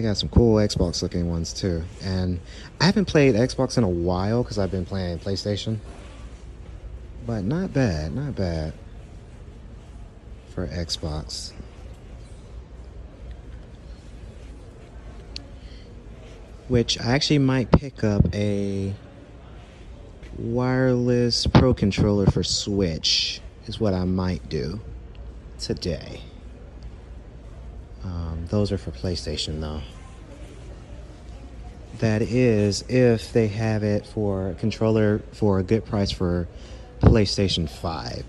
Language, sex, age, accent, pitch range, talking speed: English, male, 30-49, American, 85-110 Hz, 105 wpm